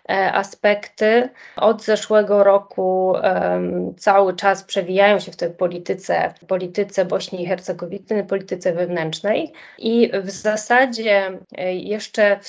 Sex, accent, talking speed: female, native, 115 wpm